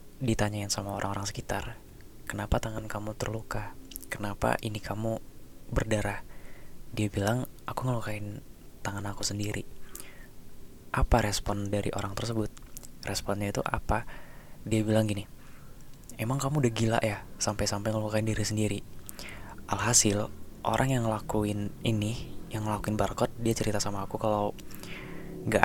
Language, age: Indonesian, 20-39